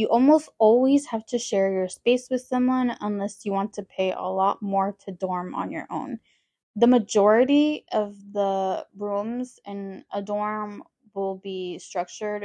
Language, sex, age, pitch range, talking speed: English, female, 10-29, 195-235 Hz, 165 wpm